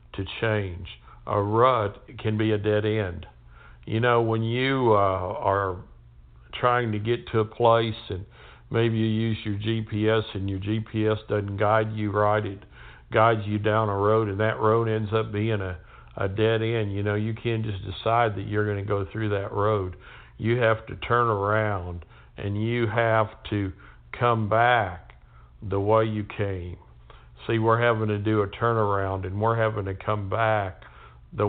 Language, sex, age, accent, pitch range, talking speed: English, male, 60-79, American, 100-110 Hz, 175 wpm